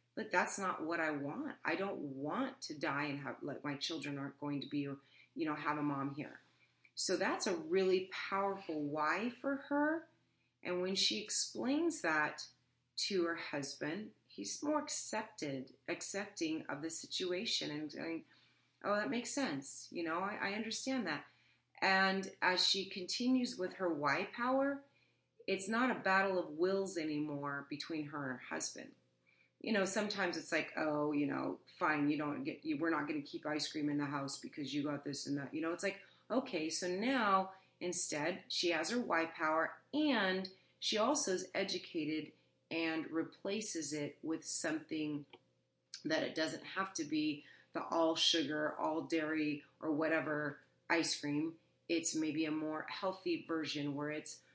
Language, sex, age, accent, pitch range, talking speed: English, female, 30-49, American, 150-200 Hz, 170 wpm